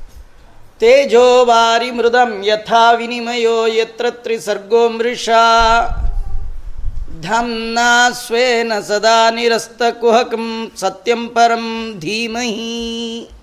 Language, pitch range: Kannada, 220-235 Hz